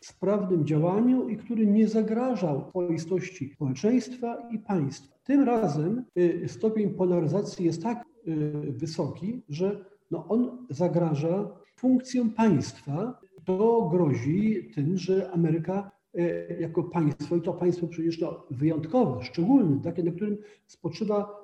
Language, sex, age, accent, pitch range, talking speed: Polish, male, 50-69, native, 155-205 Hz, 110 wpm